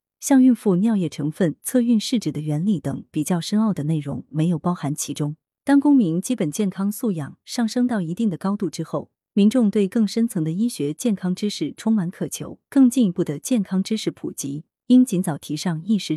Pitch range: 160-225 Hz